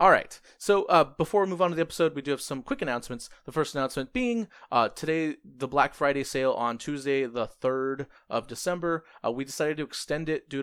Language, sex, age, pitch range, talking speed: English, male, 30-49, 120-155 Hz, 220 wpm